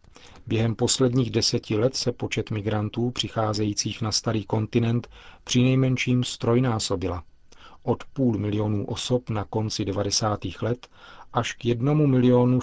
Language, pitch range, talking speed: Czech, 105-125 Hz, 120 wpm